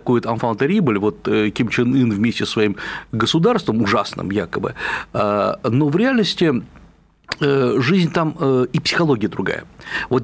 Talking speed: 125 wpm